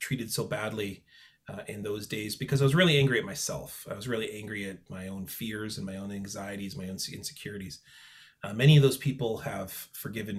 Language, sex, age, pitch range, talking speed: English, male, 30-49, 110-145 Hz, 210 wpm